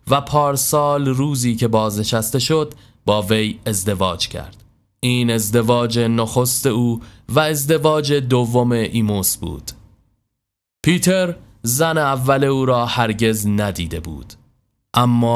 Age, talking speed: 30-49, 110 wpm